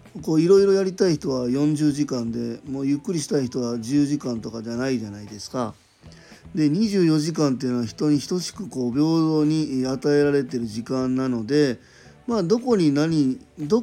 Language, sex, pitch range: Japanese, male, 120-155 Hz